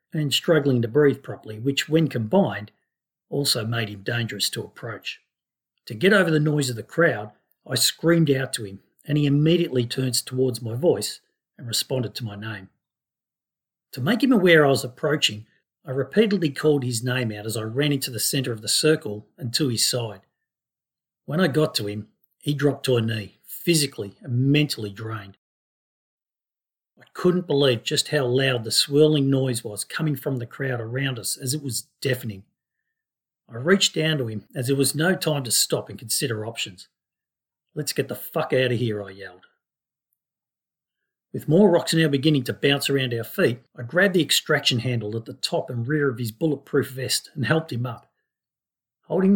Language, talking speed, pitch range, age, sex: English, 185 wpm, 115-155 Hz, 50-69, male